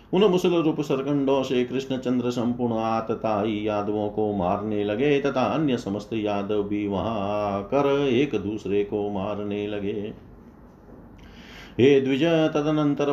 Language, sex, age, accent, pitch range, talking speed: Hindi, male, 50-69, native, 105-130 Hz, 115 wpm